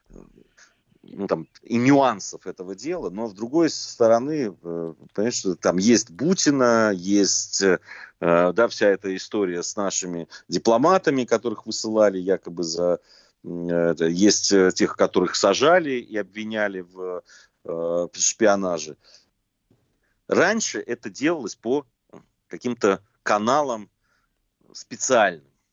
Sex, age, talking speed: male, 30-49, 90 wpm